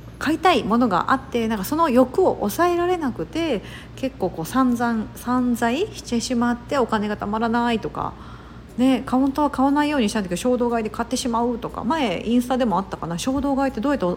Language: Japanese